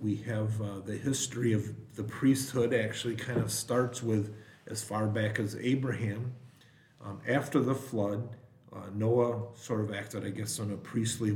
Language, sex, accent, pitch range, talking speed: English, male, American, 105-120 Hz, 170 wpm